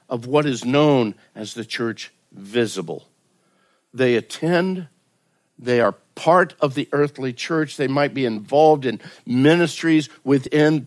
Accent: American